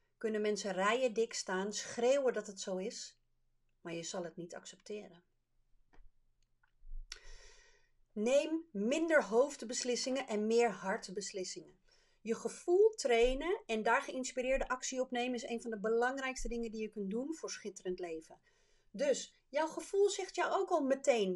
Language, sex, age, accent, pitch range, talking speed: Dutch, female, 40-59, Dutch, 220-340 Hz, 145 wpm